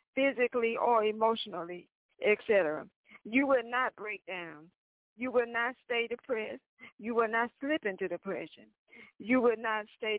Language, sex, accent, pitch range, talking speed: English, female, American, 200-240 Hz, 140 wpm